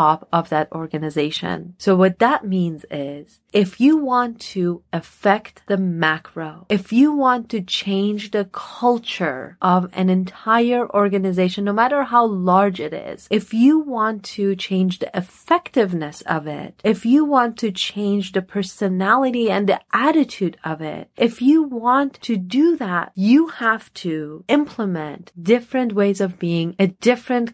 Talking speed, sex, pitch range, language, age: 150 wpm, female, 170-230 Hz, English, 30-49